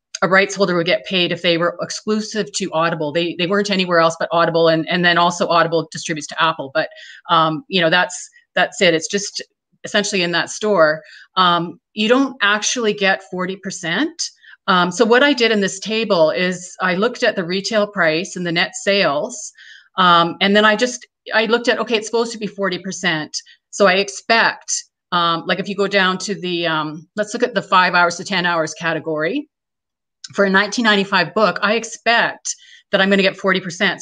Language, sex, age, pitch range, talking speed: English, female, 30-49, 175-215 Hz, 205 wpm